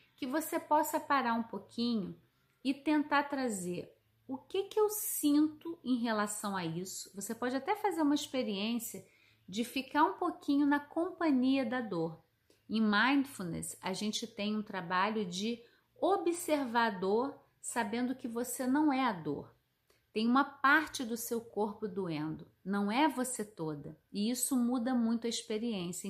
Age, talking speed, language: 30-49, 155 wpm, Portuguese